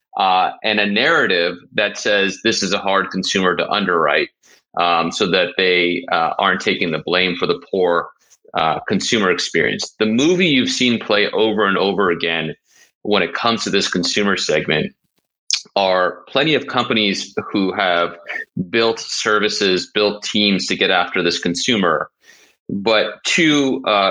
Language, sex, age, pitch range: English, male, 30-49, 95-125 Hz